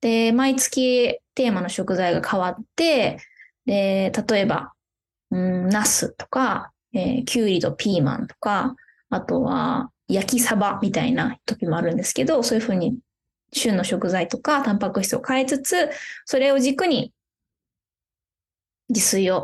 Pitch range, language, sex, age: 195-260 Hz, Japanese, female, 20-39